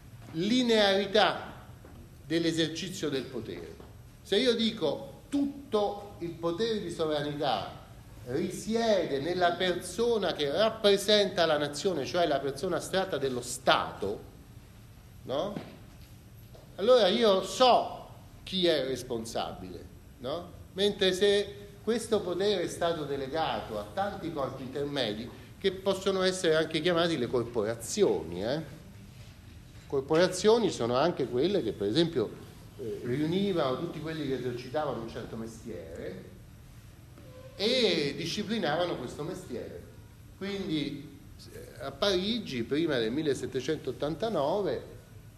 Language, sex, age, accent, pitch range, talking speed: Italian, male, 40-59, native, 120-195 Hz, 105 wpm